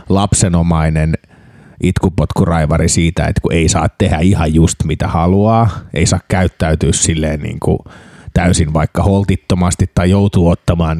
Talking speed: 130 wpm